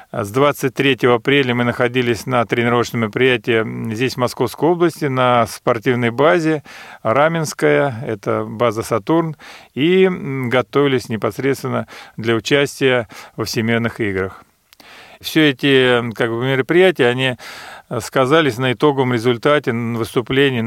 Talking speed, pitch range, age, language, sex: 105 wpm, 115-140 Hz, 40-59, Russian, male